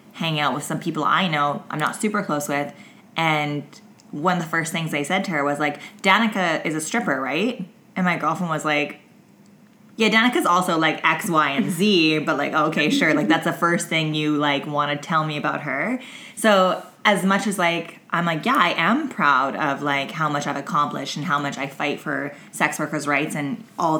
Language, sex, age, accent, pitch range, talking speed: English, female, 20-39, American, 150-200 Hz, 220 wpm